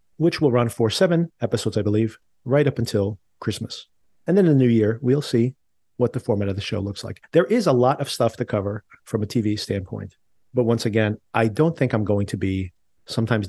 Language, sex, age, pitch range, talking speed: English, male, 40-59, 105-125 Hz, 225 wpm